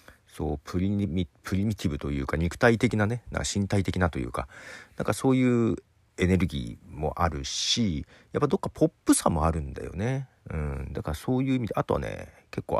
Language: Japanese